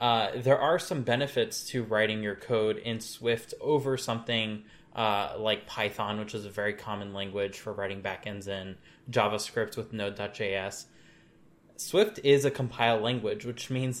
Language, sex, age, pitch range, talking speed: English, male, 10-29, 105-130 Hz, 155 wpm